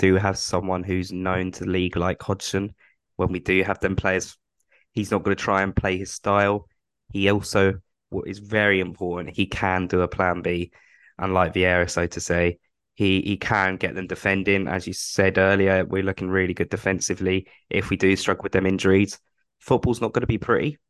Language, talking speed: English, 200 wpm